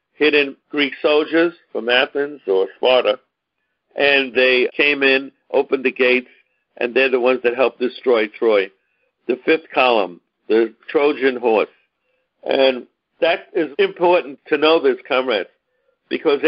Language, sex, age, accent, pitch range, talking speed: English, male, 50-69, American, 135-165 Hz, 135 wpm